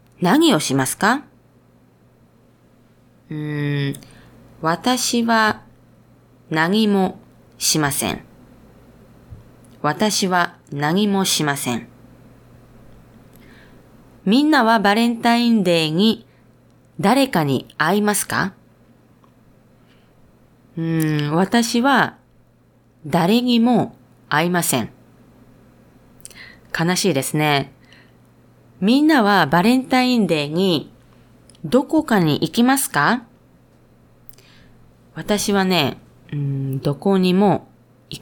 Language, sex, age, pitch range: Japanese, female, 20-39, 130-205 Hz